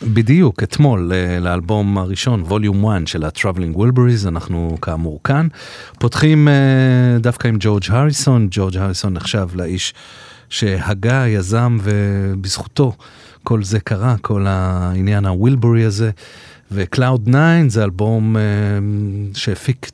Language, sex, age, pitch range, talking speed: Hebrew, male, 40-59, 95-120 Hz, 115 wpm